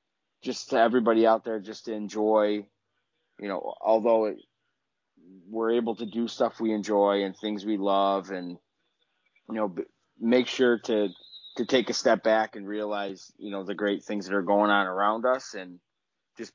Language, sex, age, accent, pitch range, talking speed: English, male, 30-49, American, 100-115 Hz, 180 wpm